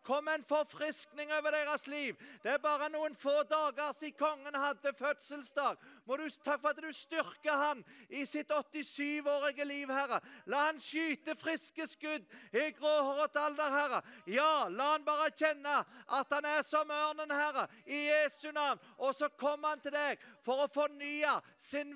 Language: English